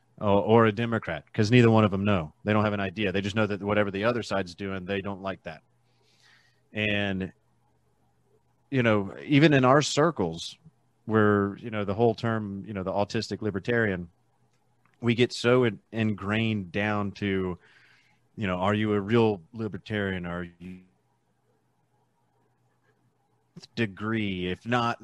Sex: male